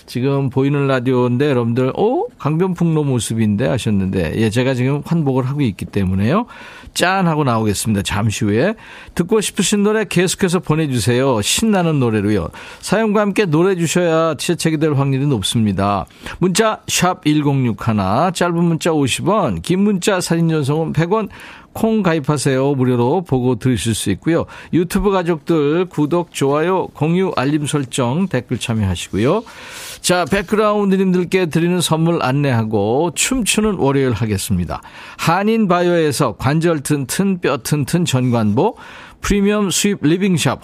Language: Korean